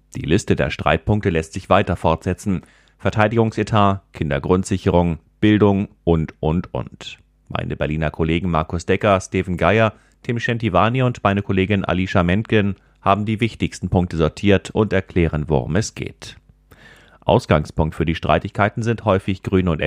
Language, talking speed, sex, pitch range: German, 140 wpm, male, 80-100 Hz